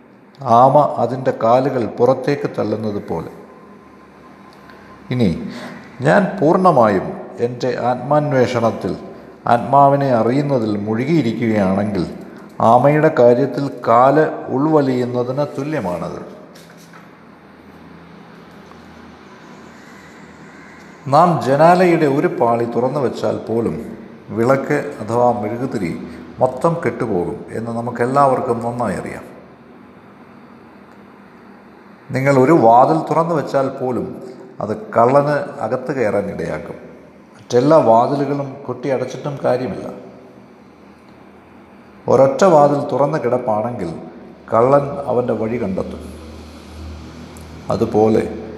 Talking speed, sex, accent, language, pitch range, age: 70 wpm, male, native, Malayalam, 115-145 Hz, 50-69